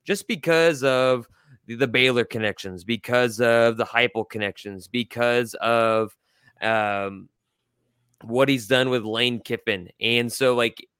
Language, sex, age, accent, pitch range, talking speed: English, male, 20-39, American, 105-130 Hz, 130 wpm